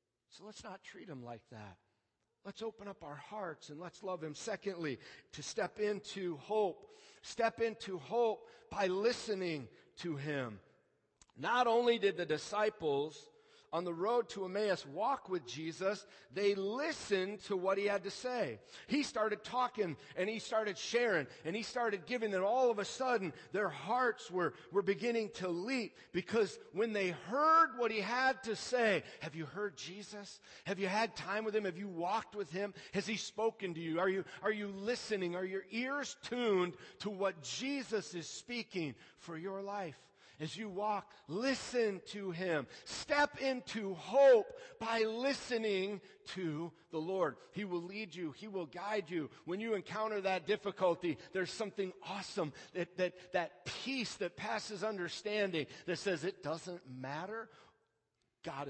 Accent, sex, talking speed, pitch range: American, male, 165 wpm, 175-225 Hz